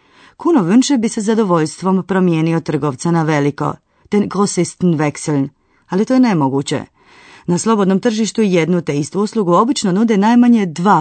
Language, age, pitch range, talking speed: Croatian, 30-49, 155-205 Hz, 140 wpm